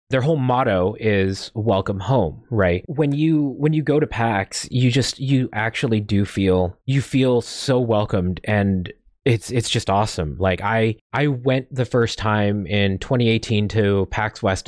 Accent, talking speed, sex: American, 170 wpm, male